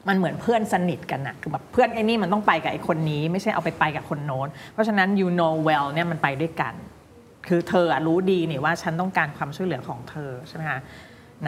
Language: Thai